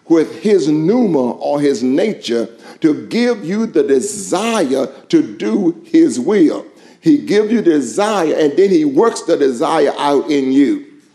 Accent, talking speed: American, 150 wpm